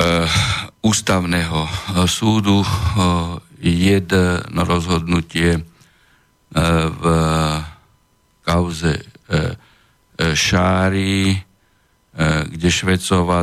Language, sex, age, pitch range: Slovak, male, 50-69, 85-95 Hz